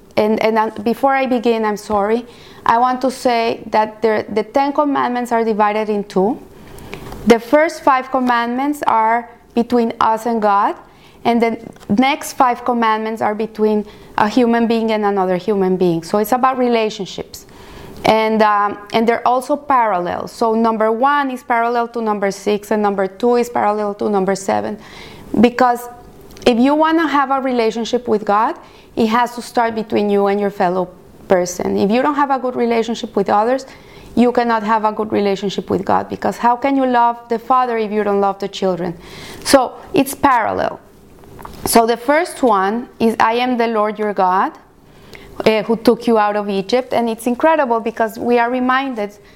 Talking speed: 180 wpm